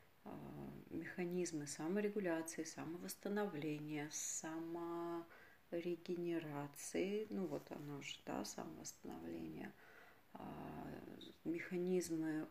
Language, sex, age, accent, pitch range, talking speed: Russian, female, 30-49, native, 155-185 Hz, 50 wpm